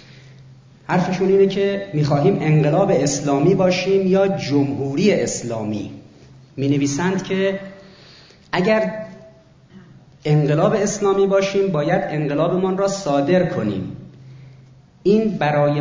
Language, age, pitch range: Persian, 40-59, 130-185 Hz